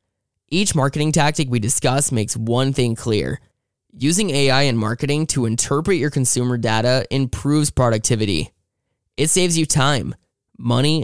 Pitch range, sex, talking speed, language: 115-150 Hz, male, 135 wpm, English